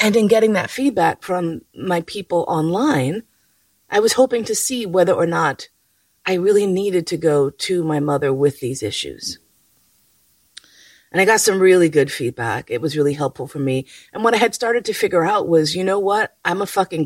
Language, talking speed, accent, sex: English, 195 wpm, American, female